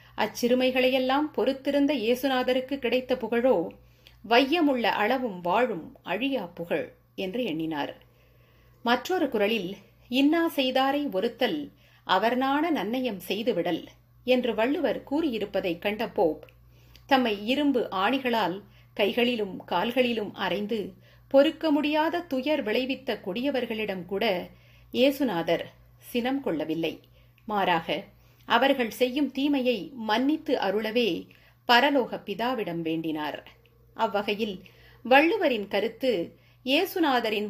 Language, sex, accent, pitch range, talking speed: Tamil, female, native, 195-270 Hz, 80 wpm